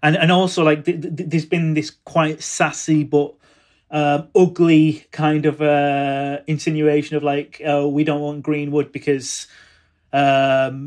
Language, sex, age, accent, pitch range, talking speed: English, male, 30-49, British, 145-165 Hz, 155 wpm